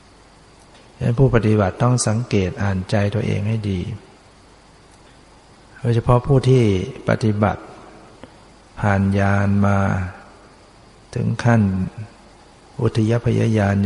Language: Thai